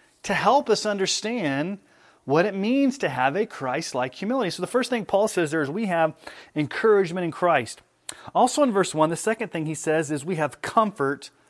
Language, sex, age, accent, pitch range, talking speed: English, male, 30-49, American, 145-190 Hz, 200 wpm